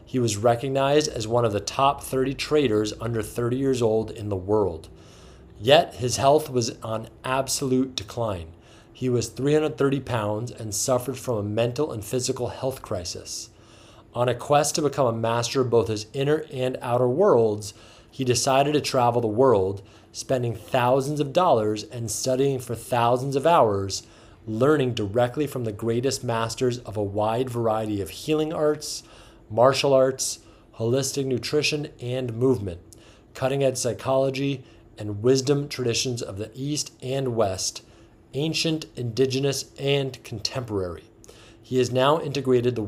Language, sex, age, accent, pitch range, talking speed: English, male, 30-49, American, 110-135 Hz, 145 wpm